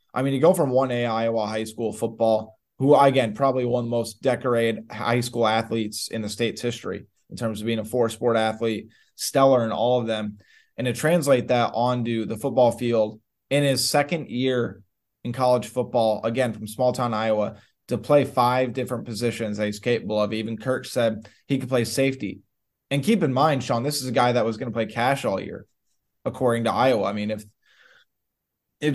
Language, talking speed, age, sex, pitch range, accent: English, 200 wpm, 20-39, male, 115-135 Hz, American